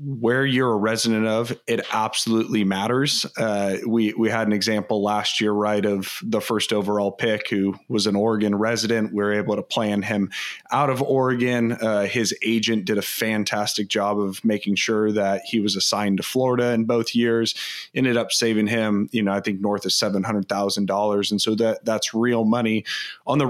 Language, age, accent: English, 30-49, American